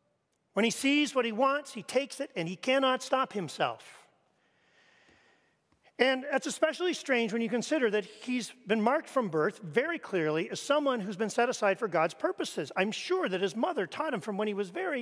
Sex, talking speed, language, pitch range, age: male, 200 wpm, English, 190-270 Hz, 40-59